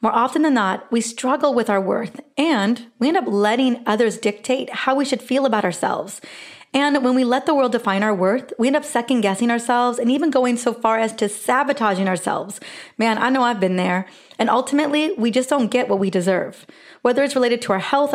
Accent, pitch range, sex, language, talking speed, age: American, 205-255 Hz, female, English, 220 wpm, 30-49